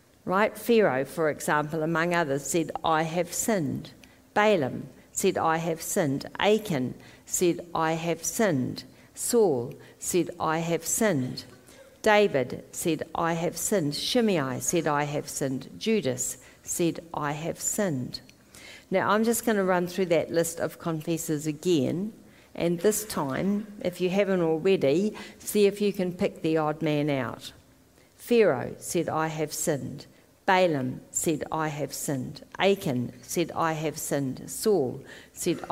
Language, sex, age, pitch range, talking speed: English, female, 50-69, 150-190 Hz, 145 wpm